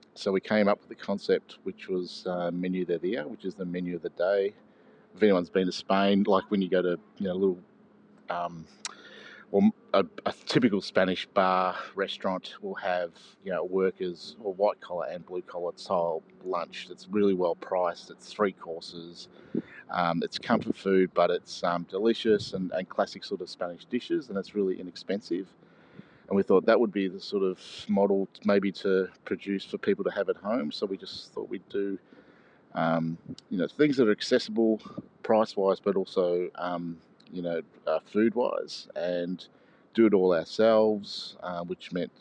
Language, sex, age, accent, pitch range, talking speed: English, male, 40-59, Australian, 90-100 Hz, 185 wpm